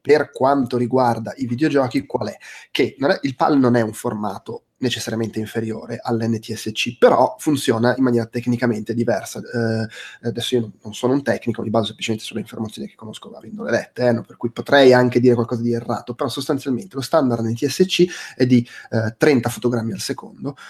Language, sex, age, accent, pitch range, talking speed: Italian, male, 30-49, native, 115-135 Hz, 185 wpm